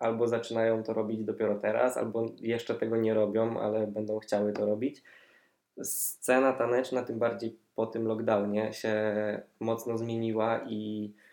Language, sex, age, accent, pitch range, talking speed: Polish, male, 20-39, native, 105-115 Hz, 145 wpm